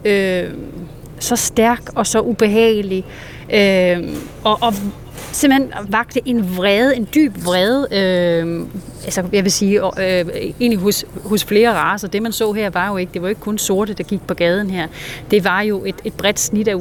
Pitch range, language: 190-230 Hz, Danish